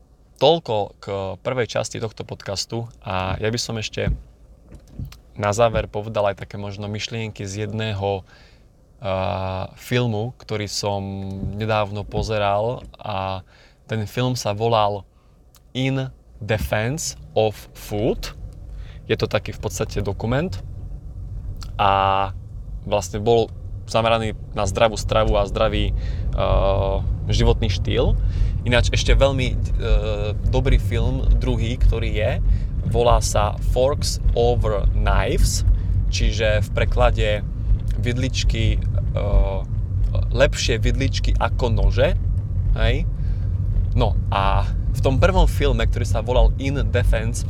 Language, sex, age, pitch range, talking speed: Slovak, male, 20-39, 95-110 Hz, 110 wpm